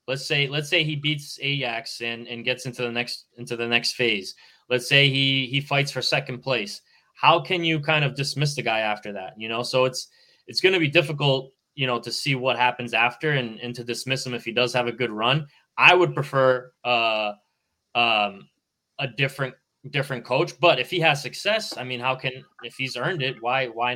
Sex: male